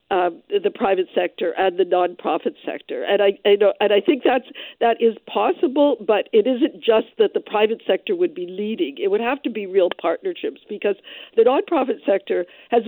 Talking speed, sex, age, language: 200 wpm, female, 50-69, English